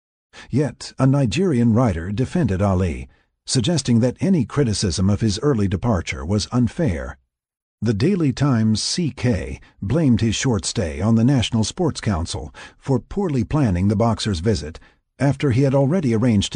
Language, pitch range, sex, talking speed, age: English, 95-135 Hz, male, 145 wpm, 50-69